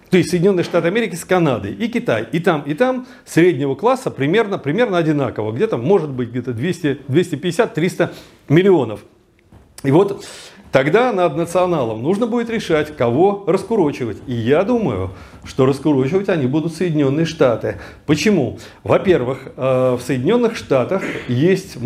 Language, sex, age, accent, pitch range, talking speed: Russian, male, 40-59, native, 130-180 Hz, 135 wpm